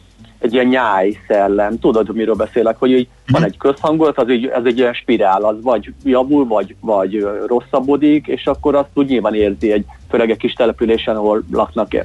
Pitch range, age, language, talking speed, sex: 105-130 Hz, 40-59, Hungarian, 170 wpm, male